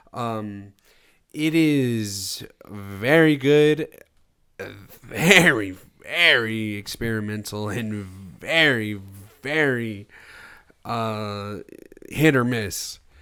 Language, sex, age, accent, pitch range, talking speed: English, male, 20-39, American, 110-155 Hz, 70 wpm